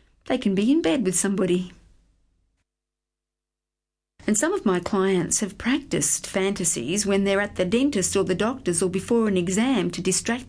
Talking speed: 165 wpm